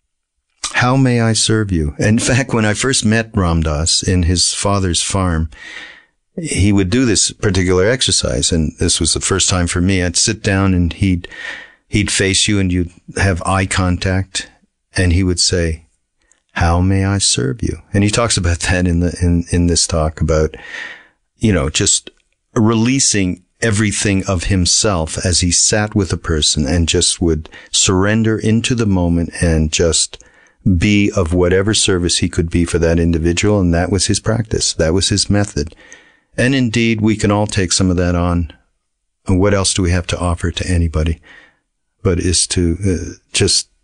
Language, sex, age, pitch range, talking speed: English, male, 50-69, 85-105 Hz, 180 wpm